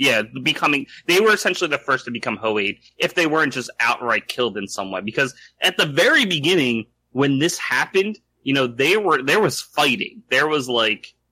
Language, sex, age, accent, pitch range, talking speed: English, male, 30-49, American, 110-140 Hz, 195 wpm